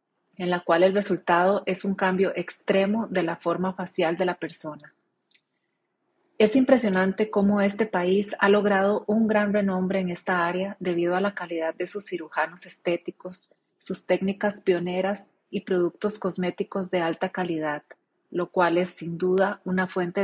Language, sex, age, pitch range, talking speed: Spanish, female, 30-49, 175-195 Hz, 155 wpm